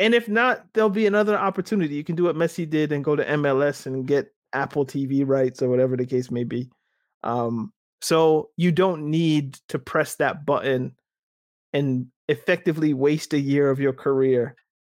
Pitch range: 140-180 Hz